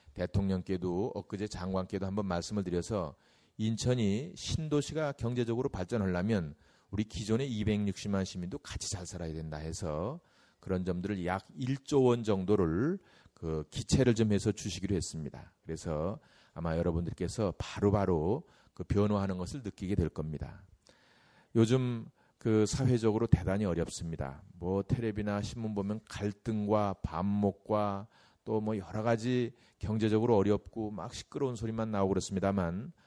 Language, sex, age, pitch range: Korean, male, 40-59, 90-110 Hz